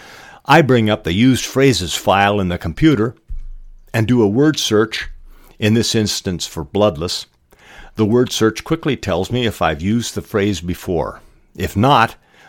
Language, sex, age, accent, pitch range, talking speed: English, male, 50-69, American, 80-115 Hz, 165 wpm